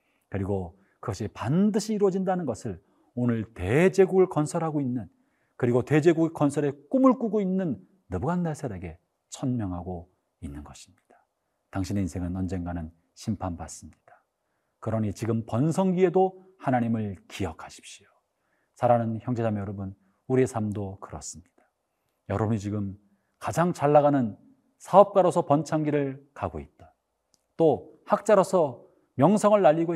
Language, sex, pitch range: Korean, male, 95-165 Hz